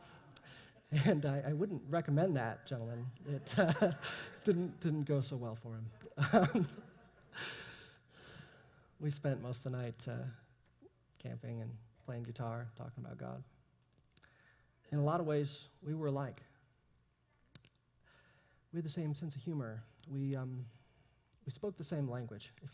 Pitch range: 115-140 Hz